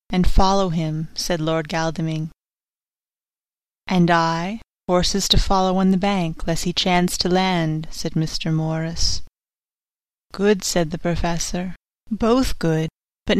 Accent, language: American, English